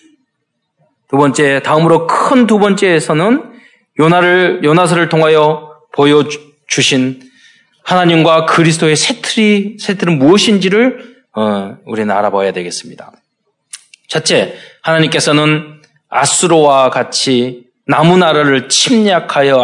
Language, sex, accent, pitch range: Korean, male, native, 135-190 Hz